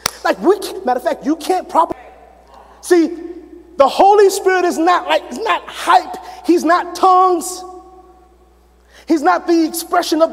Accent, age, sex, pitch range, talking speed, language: American, 30-49, male, 300-380 Hz, 150 wpm, English